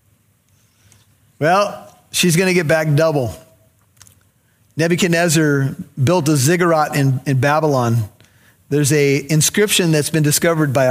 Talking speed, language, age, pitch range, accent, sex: 115 wpm, English, 40-59, 125-170 Hz, American, male